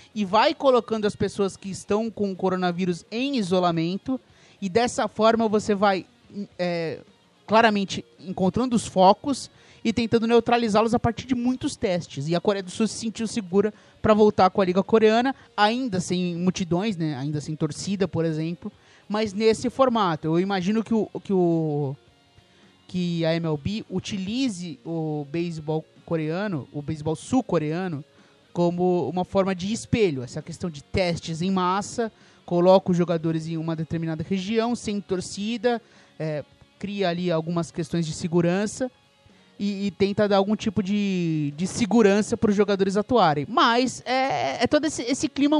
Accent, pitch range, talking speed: Brazilian, 175-225 Hz, 150 wpm